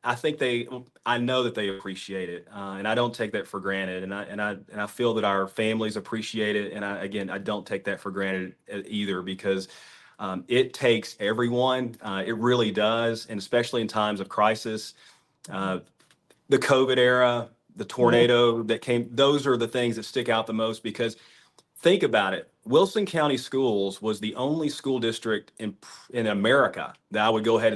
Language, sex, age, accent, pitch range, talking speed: English, male, 30-49, American, 105-120 Hz, 195 wpm